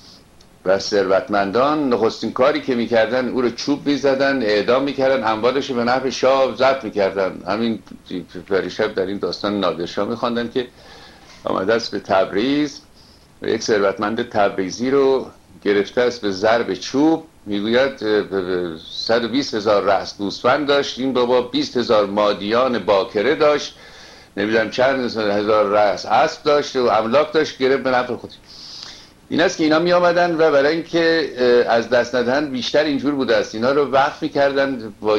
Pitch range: 105-135 Hz